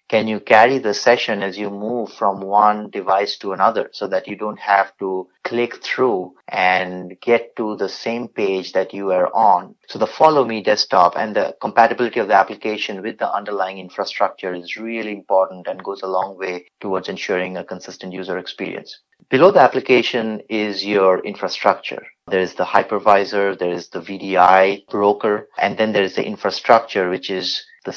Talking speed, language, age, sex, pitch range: 180 wpm, English, 30-49, male, 95-115 Hz